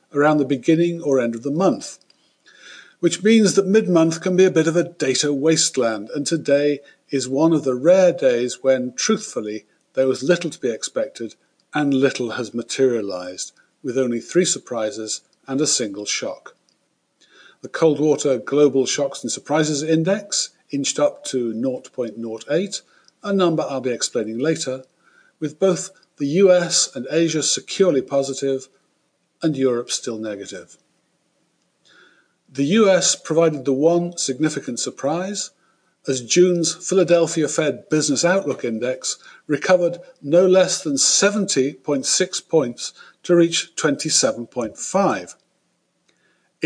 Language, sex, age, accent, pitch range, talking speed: English, male, 50-69, British, 130-185 Hz, 130 wpm